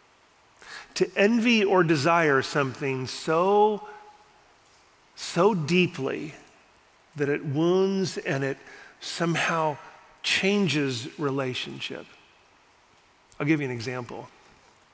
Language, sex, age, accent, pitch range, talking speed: English, male, 40-59, American, 145-190 Hz, 85 wpm